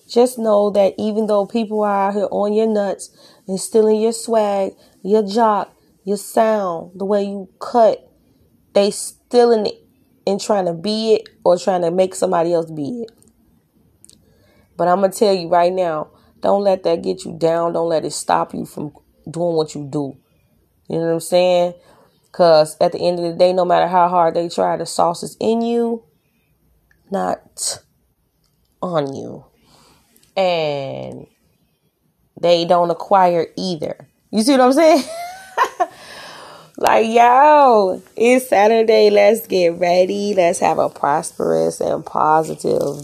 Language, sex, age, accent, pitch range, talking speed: English, female, 20-39, American, 170-215 Hz, 160 wpm